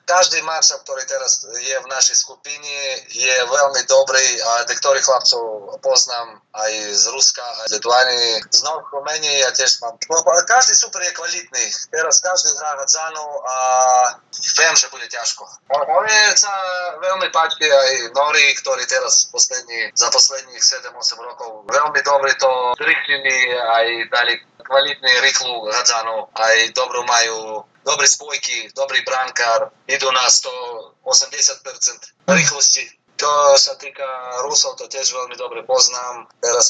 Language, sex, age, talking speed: Slovak, male, 30-49, 120 wpm